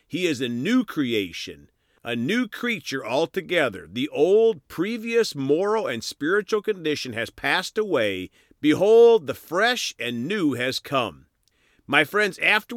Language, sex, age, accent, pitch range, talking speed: English, male, 50-69, American, 120-185 Hz, 135 wpm